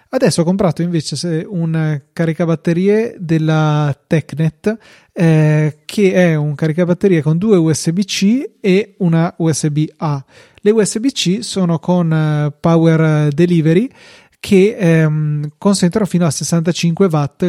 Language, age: Italian, 30-49